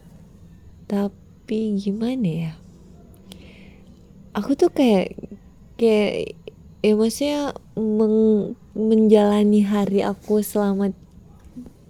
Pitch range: 170-210 Hz